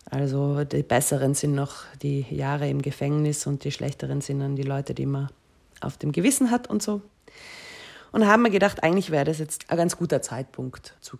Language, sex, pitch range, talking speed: German, female, 140-180 Hz, 200 wpm